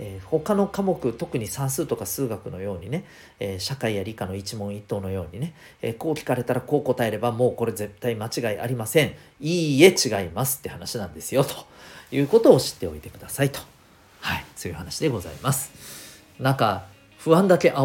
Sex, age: male, 40-59